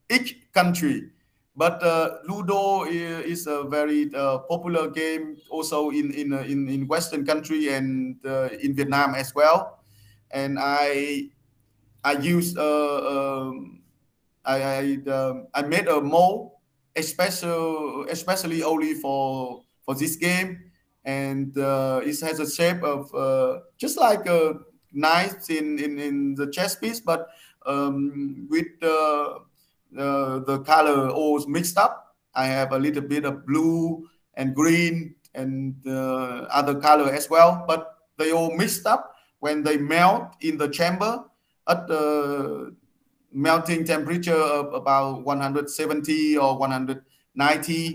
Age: 20-39